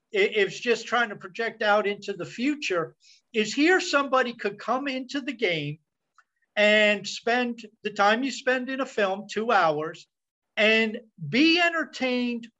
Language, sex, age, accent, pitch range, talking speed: English, male, 50-69, American, 185-245 Hz, 150 wpm